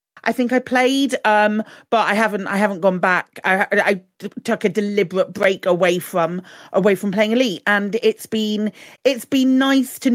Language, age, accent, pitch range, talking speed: English, 40-59, British, 185-225 Hz, 190 wpm